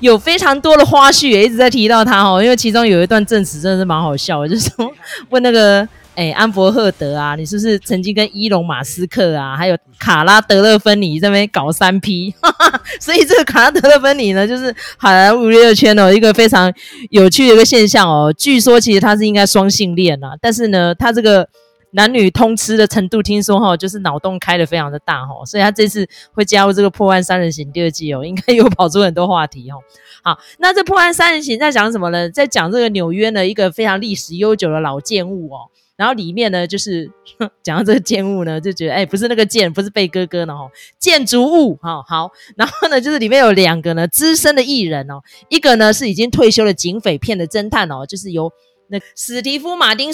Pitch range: 180-235 Hz